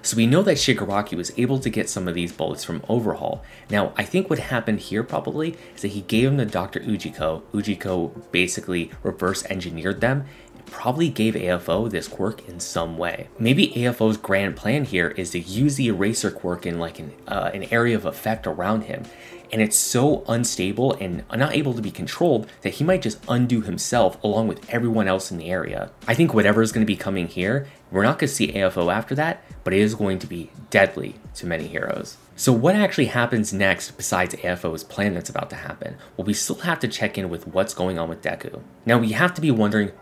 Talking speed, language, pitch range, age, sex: 215 wpm, English, 95-125 Hz, 20-39, male